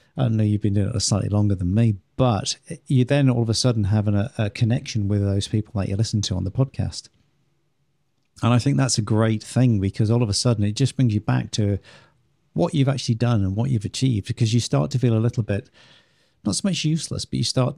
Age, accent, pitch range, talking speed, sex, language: 50-69, British, 100-125 Hz, 245 wpm, male, English